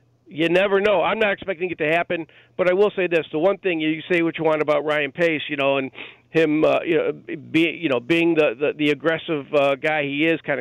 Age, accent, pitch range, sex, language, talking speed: 50-69, American, 145-175 Hz, male, English, 255 wpm